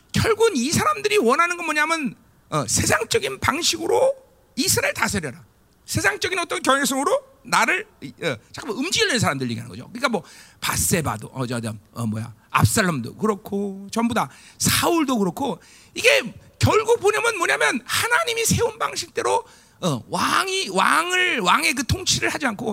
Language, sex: Korean, male